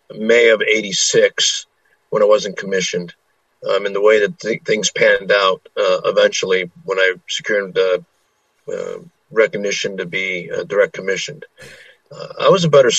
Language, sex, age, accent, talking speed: English, male, 50-69, American, 155 wpm